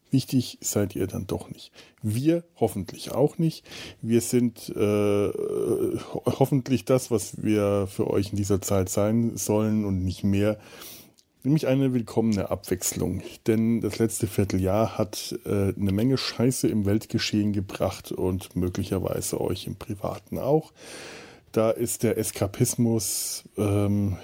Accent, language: German, German